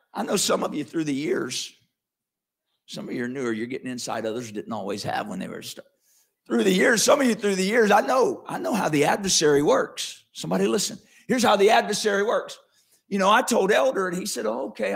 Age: 50-69